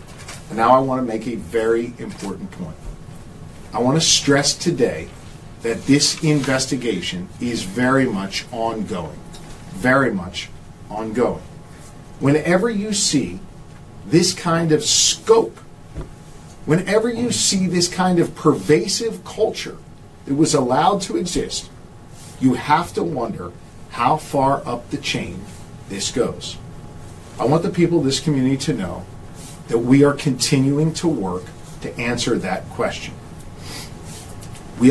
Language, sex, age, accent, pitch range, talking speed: English, male, 40-59, American, 120-155 Hz, 130 wpm